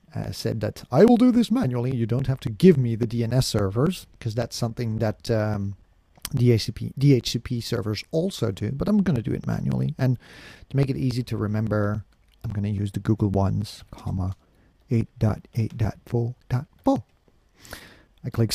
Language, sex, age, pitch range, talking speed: English, male, 40-59, 110-150 Hz, 170 wpm